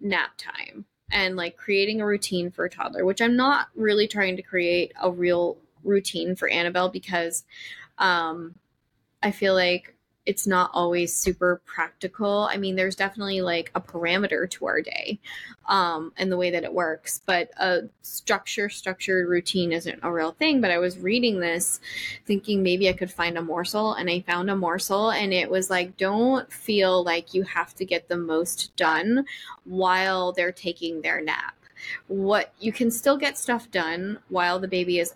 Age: 10-29